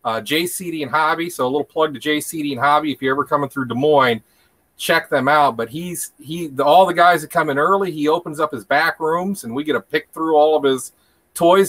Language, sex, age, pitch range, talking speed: English, male, 40-59, 135-170 Hz, 250 wpm